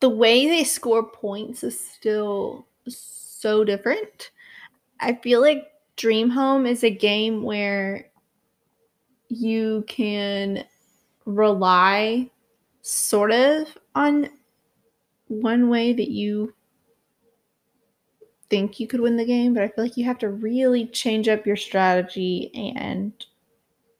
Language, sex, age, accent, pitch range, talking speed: English, female, 20-39, American, 205-250 Hz, 120 wpm